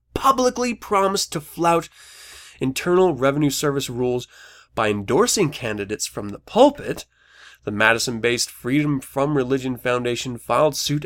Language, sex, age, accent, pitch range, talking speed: English, male, 20-39, American, 115-150 Hz, 120 wpm